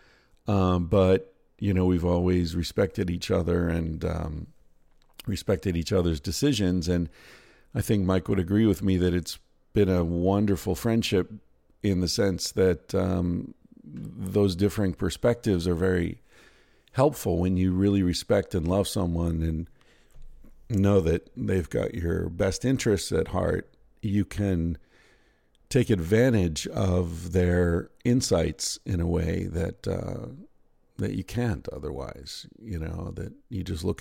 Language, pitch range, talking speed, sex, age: English, 85-100 Hz, 140 wpm, male, 50-69